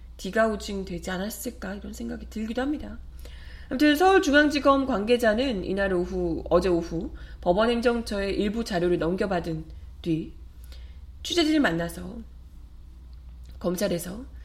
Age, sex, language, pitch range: 20-39, female, Korean, 170-265 Hz